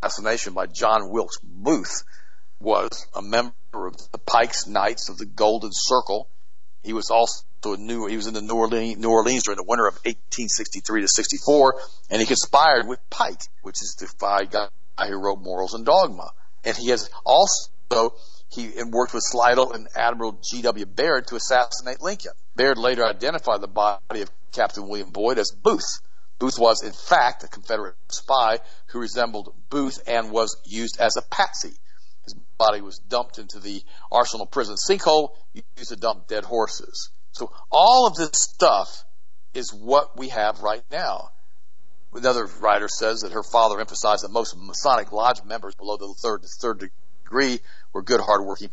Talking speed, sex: 170 wpm, male